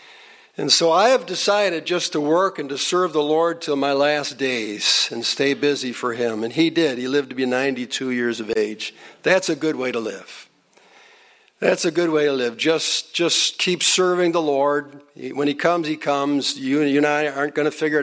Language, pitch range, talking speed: English, 145-185 Hz, 210 wpm